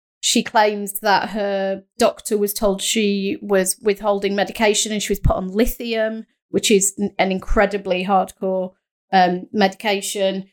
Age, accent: 30-49, British